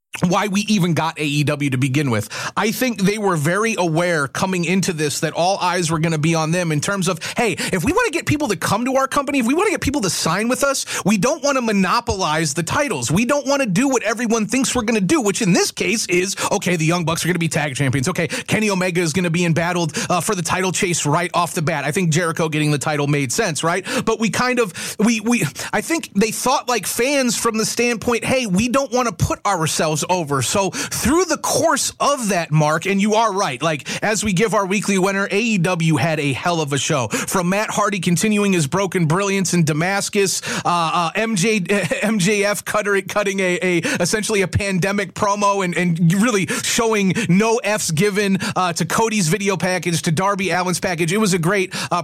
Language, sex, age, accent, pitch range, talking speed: English, male, 30-49, American, 170-215 Hz, 235 wpm